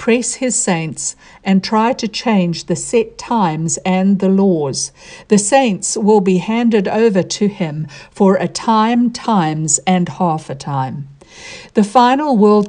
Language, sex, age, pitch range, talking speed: English, female, 60-79, 170-225 Hz, 150 wpm